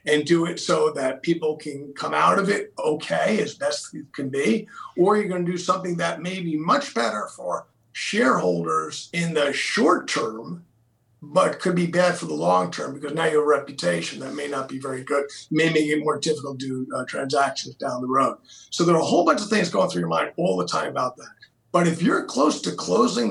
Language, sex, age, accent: English, male, 50-69, American